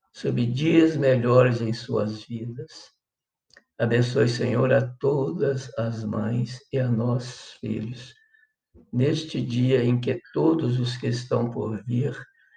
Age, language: 60-79, Portuguese